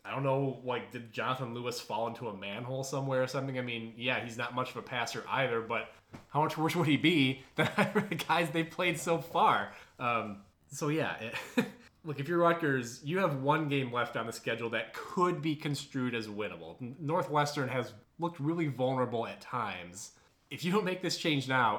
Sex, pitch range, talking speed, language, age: male, 110-140 Hz, 200 wpm, English, 20-39